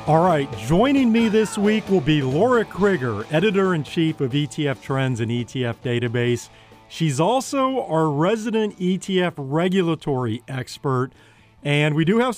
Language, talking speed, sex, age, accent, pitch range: English, 135 wpm, male, 40-59, American, 130-185 Hz